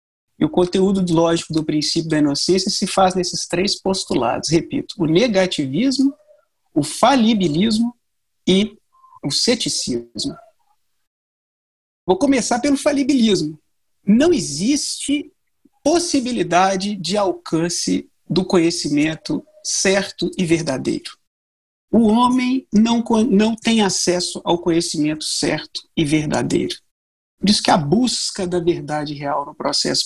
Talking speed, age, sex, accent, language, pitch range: 110 wpm, 50-69, male, Brazilian, Portuguese, 175-265 Hz